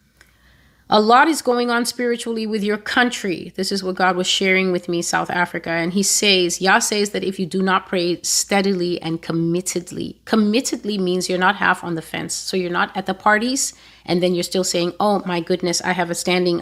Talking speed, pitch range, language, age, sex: 215 wpm, 175-215 Hz, English, 30-49, female